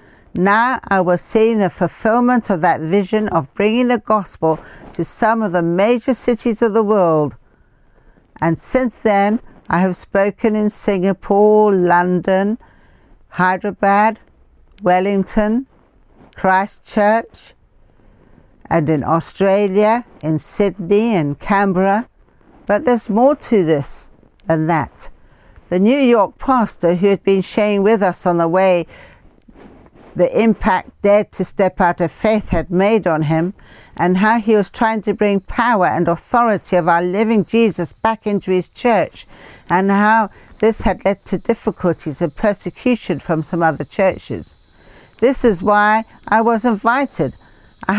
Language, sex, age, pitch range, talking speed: English, female, 60-79, 175-220 Hz, 140 wpm